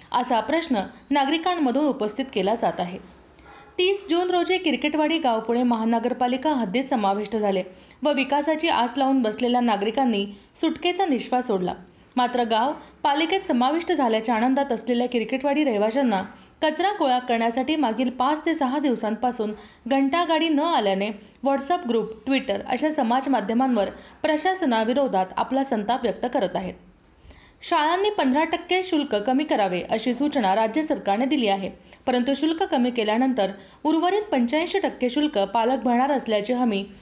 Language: Marathi